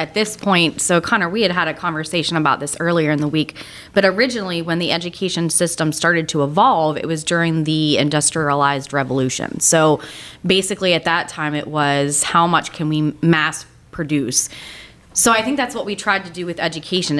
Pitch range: 150-200 Hz